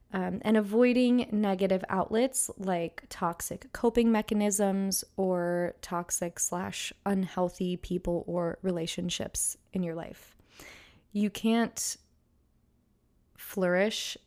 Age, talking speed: 20-39, 95 wpm